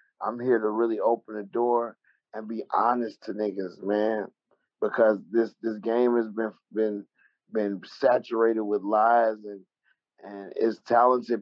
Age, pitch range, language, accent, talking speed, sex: 30-49, 110-125 Hz, English, American, 145 wpm, male